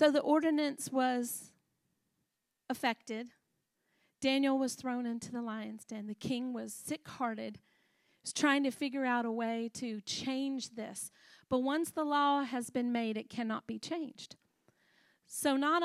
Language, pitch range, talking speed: English, 230-275 Hz, 150 wpm